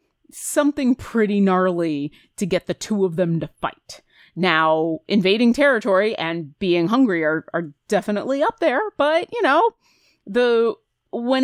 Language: English